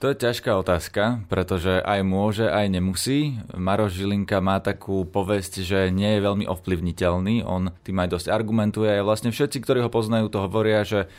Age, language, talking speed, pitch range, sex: 20-39, Slovak, 175 wpm, 95-115 Hz, male